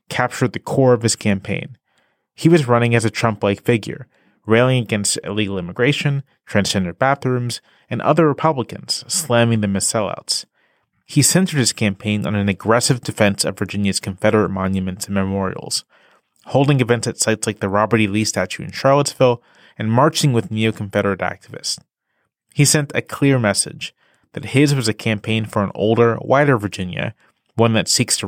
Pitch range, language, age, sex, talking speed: 100-125 Hz, English, 30-49, male, 160 wpm